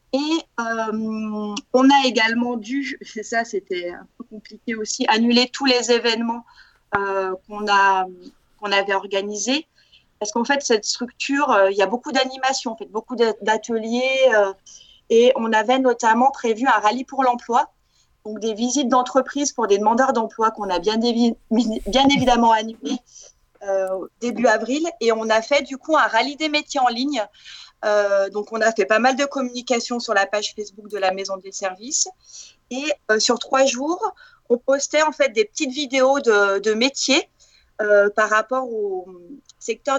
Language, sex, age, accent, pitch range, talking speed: French, female, 30-49, French, 215-260 Hz, 175 wpm